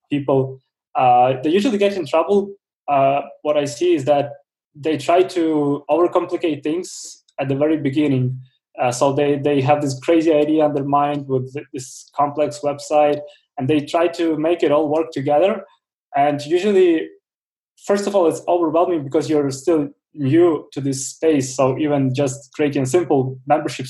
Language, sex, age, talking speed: English, male, 20-39, 170 wpm